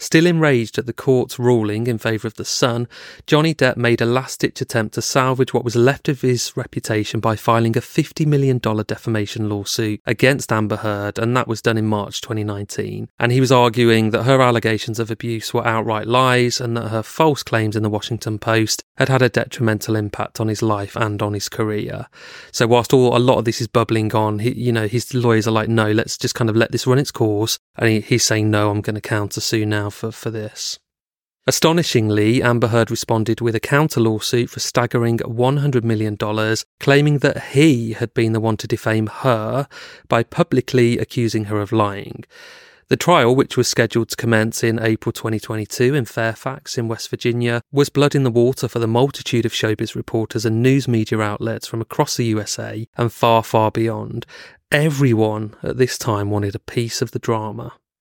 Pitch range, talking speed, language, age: 110-125 Hz, 200 wpm, English, 30-49